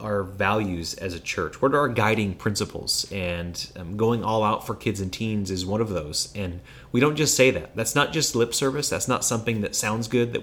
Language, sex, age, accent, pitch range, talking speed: English, male, 30-49, American, 95-120 Hz, 235 wpm